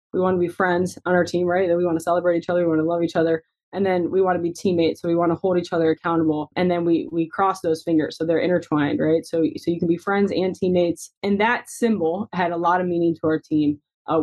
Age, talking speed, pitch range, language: 20-39, 285 wpm, 170-195 Hz, English